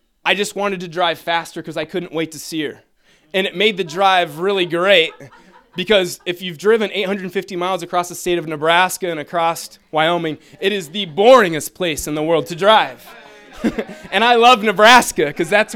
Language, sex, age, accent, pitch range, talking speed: English, male, 20-39, American, 170-205 Hz, 190 wpm